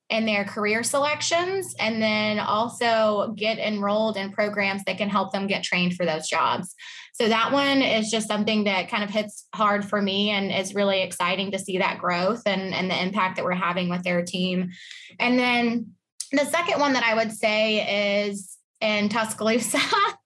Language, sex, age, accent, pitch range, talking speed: English, female, 20-39, American, 205-245 Hz, 185 wpm